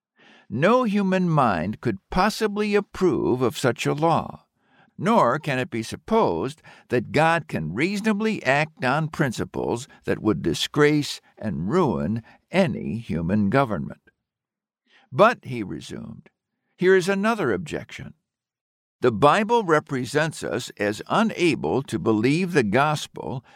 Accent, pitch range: American, 120-195 Hz